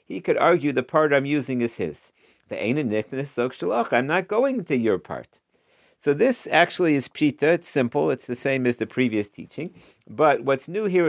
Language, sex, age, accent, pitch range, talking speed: English, male, 50-69, American, 115-145 Hz, 190 wpm